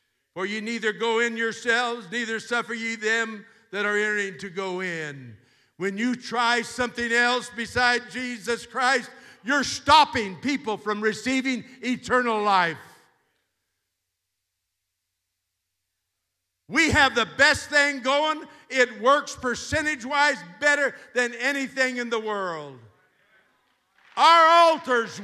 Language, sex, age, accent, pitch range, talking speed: English, male, 50-69, American, 225-315 Hz, 115 wpm